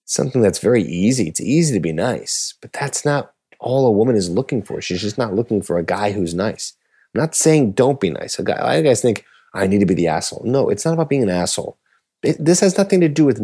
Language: English